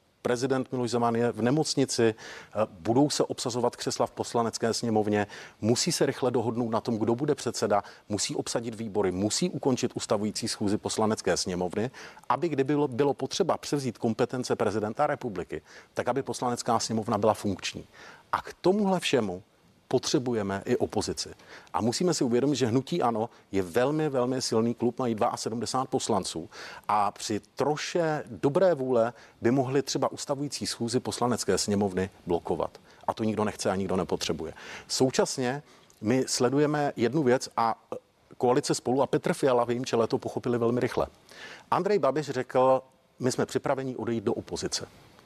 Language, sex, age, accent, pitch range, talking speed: Czech, male, 40-59, native, 110-135 Hz, 150 wpm